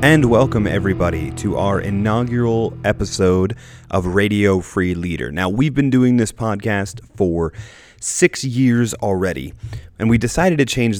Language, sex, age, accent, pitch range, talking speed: English, male, 30-49, American, 90-110 Hz, 140 wpm